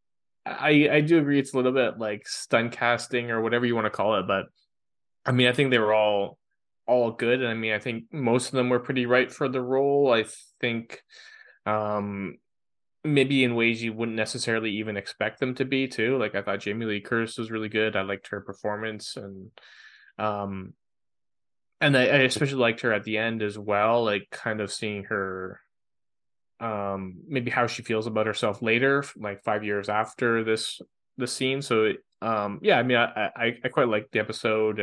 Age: 20-39